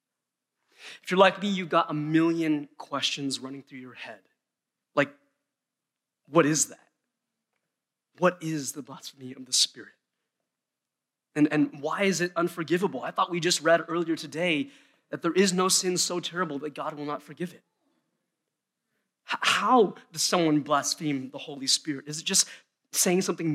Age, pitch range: 30-49, 150-185 Hz